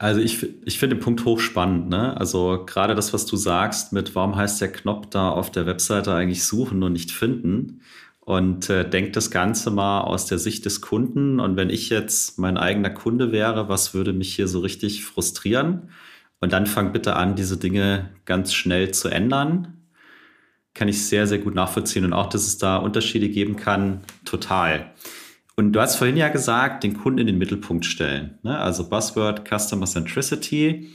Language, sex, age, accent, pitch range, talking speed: German, male, 30-49, German, 95-115 Hz, 185 wpm